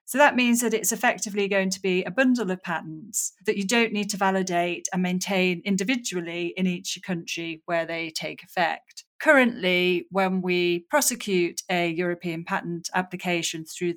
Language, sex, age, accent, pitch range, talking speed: English, female, 30-49, British, 170-200 Hz, 165 wpm